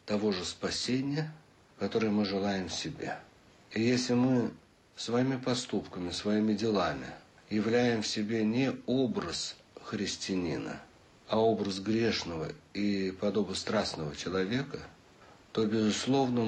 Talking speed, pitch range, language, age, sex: 105 wpm, 100-125 Hz, Russian, 60-79, male